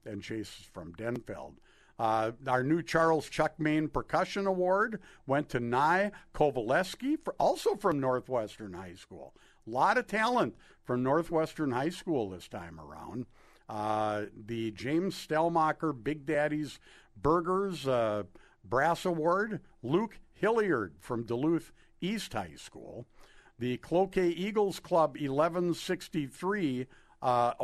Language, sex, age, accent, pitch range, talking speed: English, male, 50-69, American, 115-175 Hz, 120 wpm